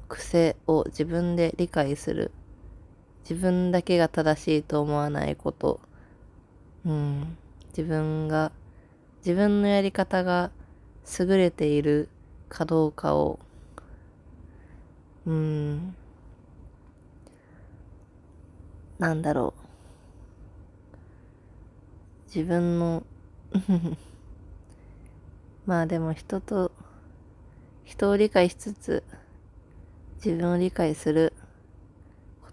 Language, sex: Japanese, female